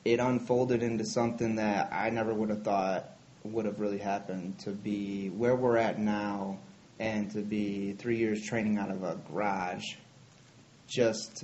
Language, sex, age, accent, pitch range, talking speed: English, male, 30-49, American, 105-125 Hz, 165 wpm